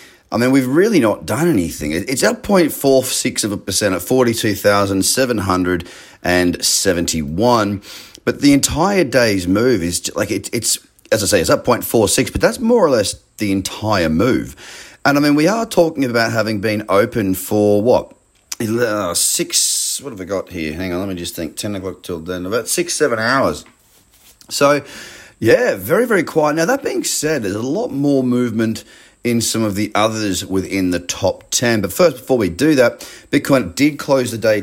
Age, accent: 30-49, Australian